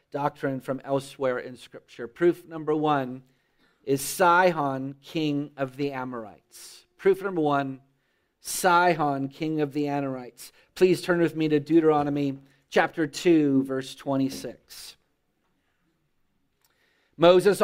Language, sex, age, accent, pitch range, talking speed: English, male, 40-59, American, 145-205 Hz, 110 wpm